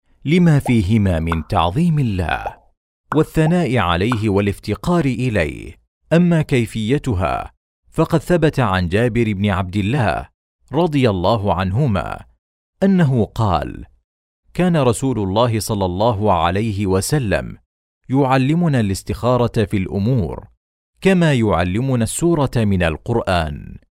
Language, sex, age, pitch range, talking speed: Arabic, male, 40-59, 95-140 Hz, 100 wpm